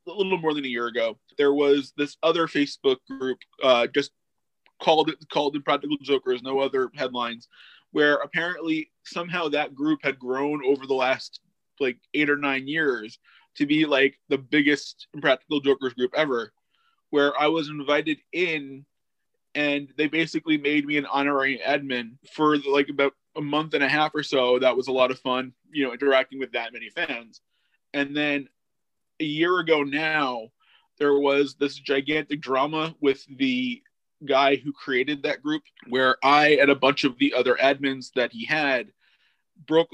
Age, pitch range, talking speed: 20-39, 135-155 Hz, 170 wpm